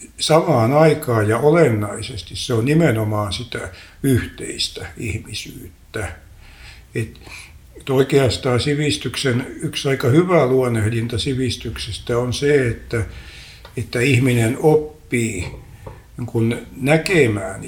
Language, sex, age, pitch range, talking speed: Finnish, male, 60-79, 105-125 Hz, 80 wpm